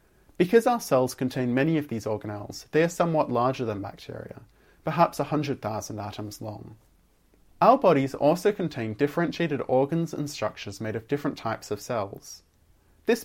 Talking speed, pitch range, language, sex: 150 wpm, 110-155 Hz, English, male